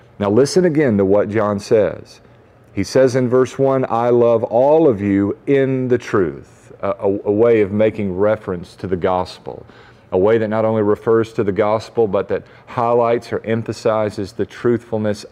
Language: English